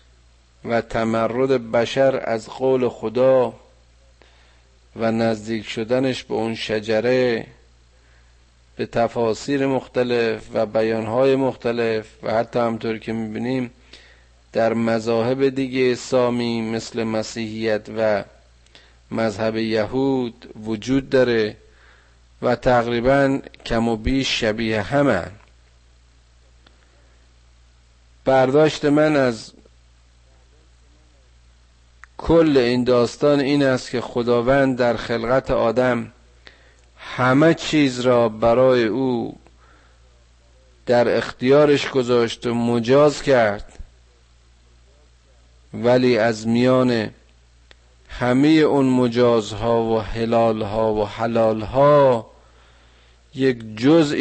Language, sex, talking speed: Persian, male, 85 wpm